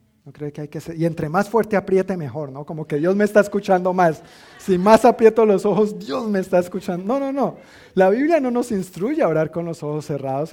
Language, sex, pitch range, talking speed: Spanish, male, 150-195 Hz, 245 wpm